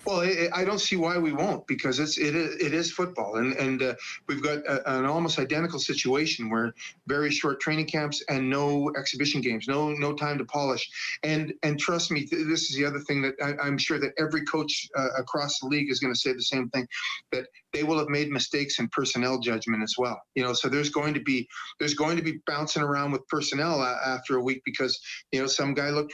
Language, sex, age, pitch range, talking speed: English, male, 40-59, 130-155 Hz, 235 wpm